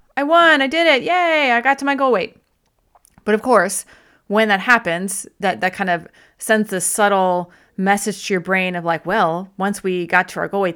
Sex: female